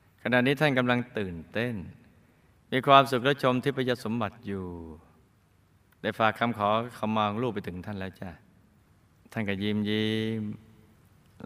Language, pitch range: Thai, 95-125 Hz